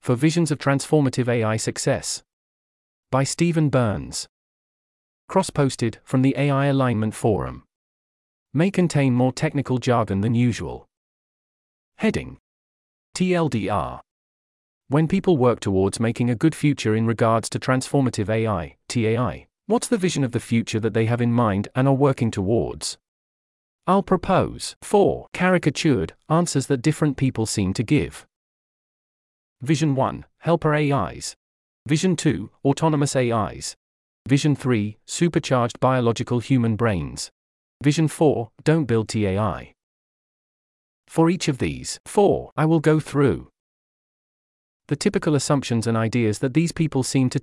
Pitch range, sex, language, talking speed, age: 110-150 Hz, male, English, 130 wpm, 40-59